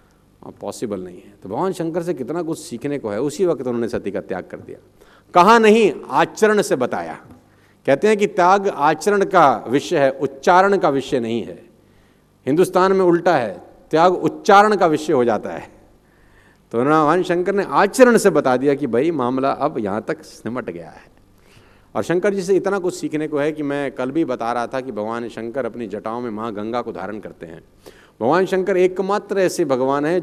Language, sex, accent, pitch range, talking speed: Hindi, male, native, 135-185 Hz, 200 wpm